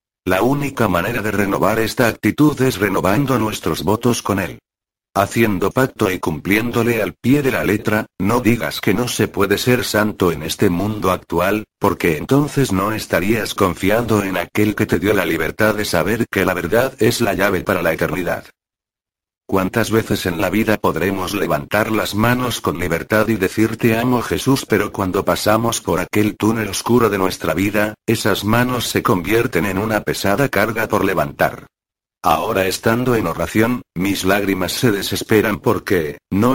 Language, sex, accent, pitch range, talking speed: Spanish, male, Spanish, 95-115 Hz, 165 wpm